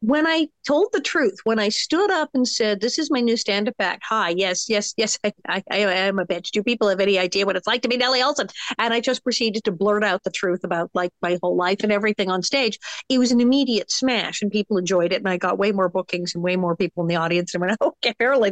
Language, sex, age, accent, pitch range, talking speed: English, female, 50-69, American, 195-255 Hz, 270 wpm